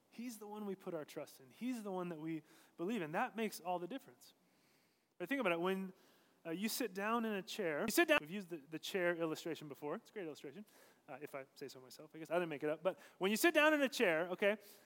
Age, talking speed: 30-49, 275 wpm